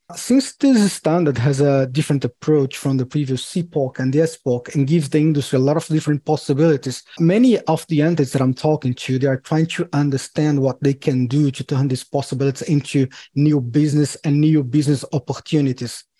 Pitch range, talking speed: 135-165 Hz, 190 wpm